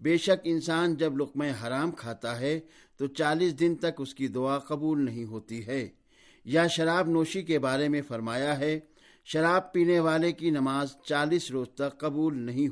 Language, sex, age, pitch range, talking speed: Urdu, male, 50-69, 135-165 Hz, 175 wpm